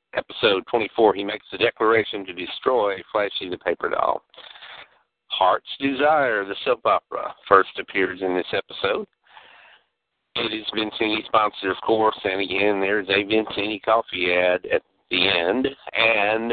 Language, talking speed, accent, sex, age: English, 140 wpm, American, male, 50-69